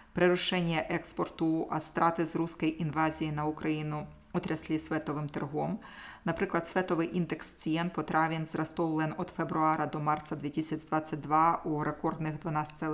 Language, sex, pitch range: Slovak, female, 155-170 Hz